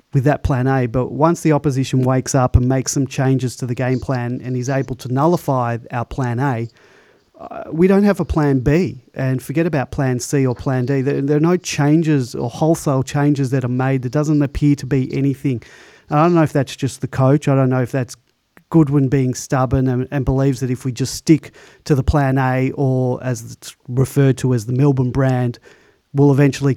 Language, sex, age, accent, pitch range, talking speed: English, male, 30-49, Australian, 130-145 Hz, 220 wpm